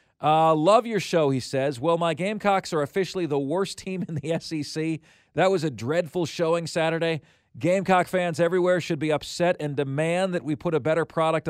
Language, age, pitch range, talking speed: English, 40-59, 145-195 Hz, 195 wpm